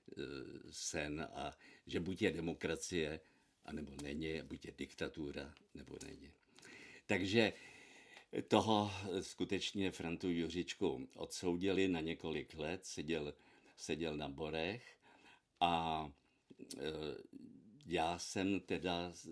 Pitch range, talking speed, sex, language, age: 75-95 Hz, 100 wpm, male, Czech, 50-69